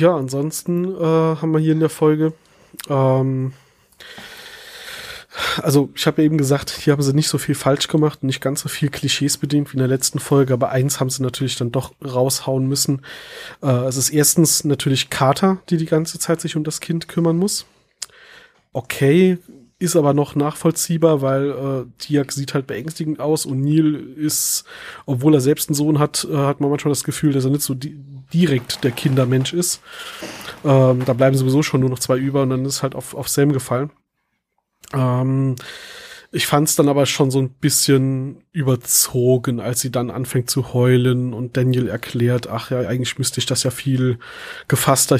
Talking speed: 190 wpm